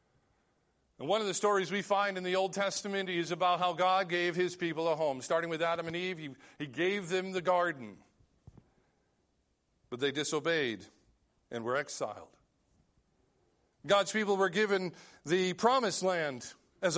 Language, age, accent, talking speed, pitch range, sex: English, 50-69, American, 160 wpm, 150-200 Hz, male